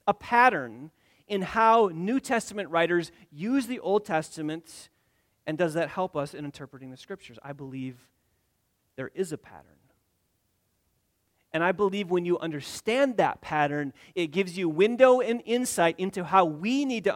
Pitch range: 145-195 Hz